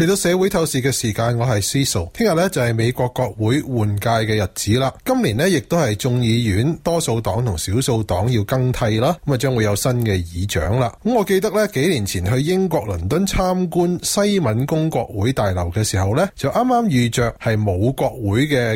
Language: Chinese